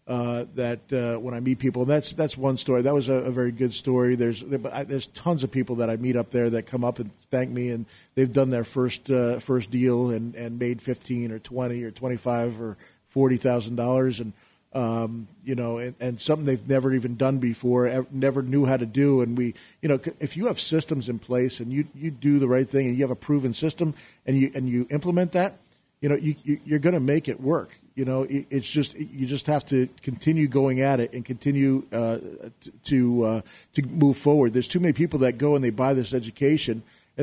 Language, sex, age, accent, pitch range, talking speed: English, male, 40-59, American, 120-140 Hz, 225 wpm